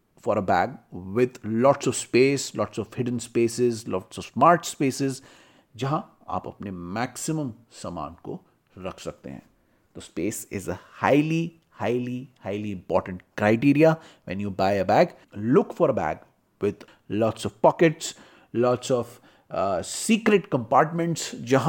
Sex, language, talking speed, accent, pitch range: male, Hindi, 75 wpm, native, 105-140 Hz